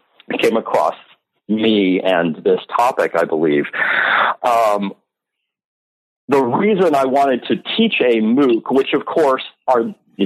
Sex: male